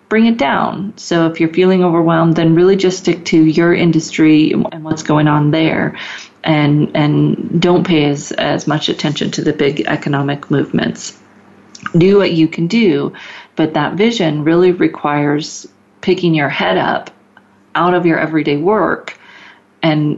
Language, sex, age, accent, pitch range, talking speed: English, female, 40-59, American, 150-185 Hz, 160 wpm